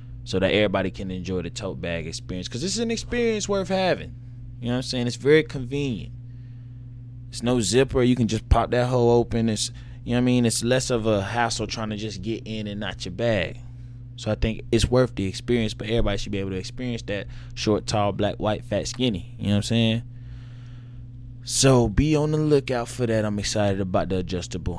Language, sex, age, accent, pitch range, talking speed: English, male, 20-39, American, 100-120 Hz, 220 wpm